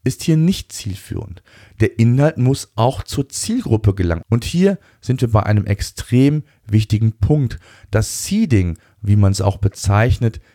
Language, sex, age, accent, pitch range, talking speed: German, male, 40-59, German, 100-125 Hz, 155 wpm